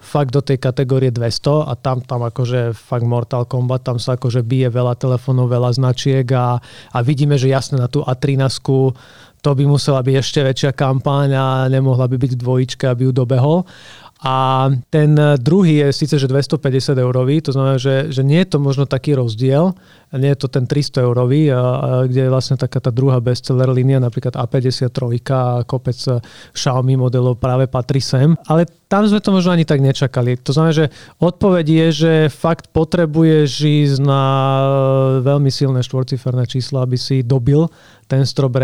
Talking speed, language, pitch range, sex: 175 wpm, Slovak, 130-145 Hz, male